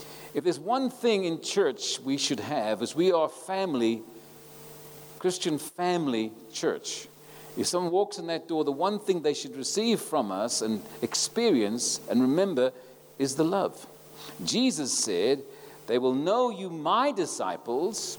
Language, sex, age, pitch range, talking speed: English, male, 50-69, 125-175 Hz, 150 wpm